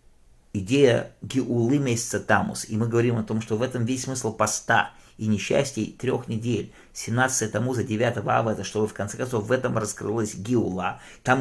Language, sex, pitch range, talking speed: English, male, 100-130 Hz, 175 wpm